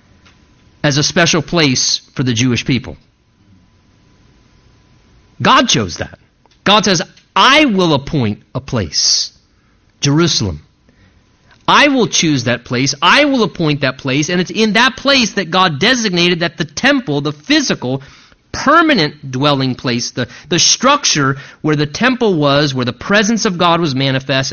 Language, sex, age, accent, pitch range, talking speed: English, male, 30-49, American, 135-185 Hz, 145 wpm